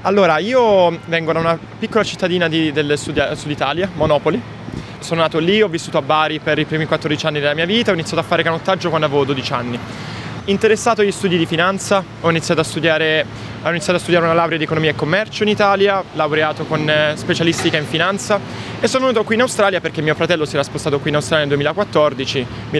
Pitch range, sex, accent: 145-175 Hz, male, native